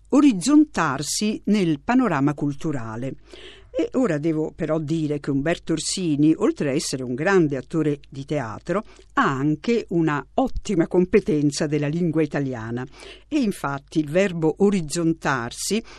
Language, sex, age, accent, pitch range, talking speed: Italian, female, 50-69, native, 145-190 Hz, 125 wpm